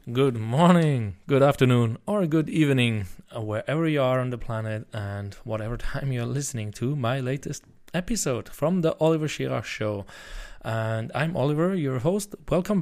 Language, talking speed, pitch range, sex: English, 155 wpm, 110-140 Hz, male